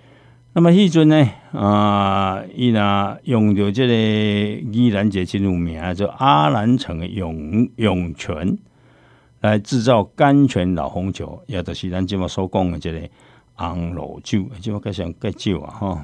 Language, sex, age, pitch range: Chinese, male, 60-79, 90-125 Hz